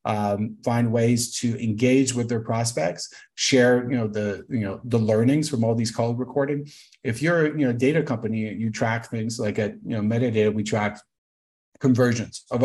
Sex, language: male, English